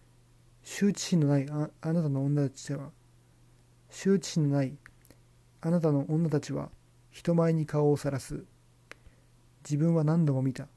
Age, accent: 40-59, native